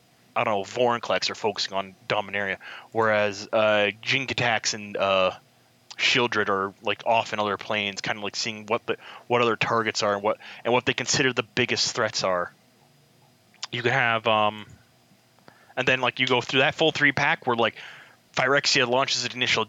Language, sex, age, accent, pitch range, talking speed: English, male, 20-39, American, 110-145 Hz, 185 wpm